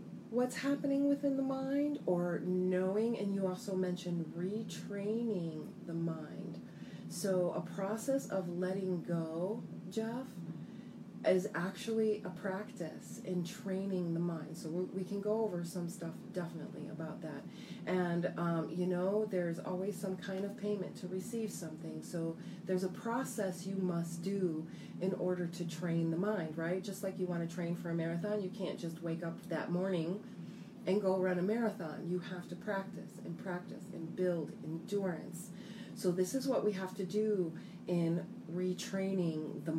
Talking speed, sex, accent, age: 160 wpm, female, American, 30-49